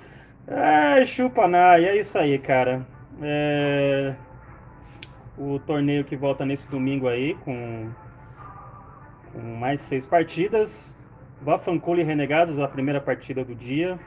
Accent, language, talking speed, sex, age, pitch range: Brazilian, English, 110 wpm, male, 20-39, 130-165 Hz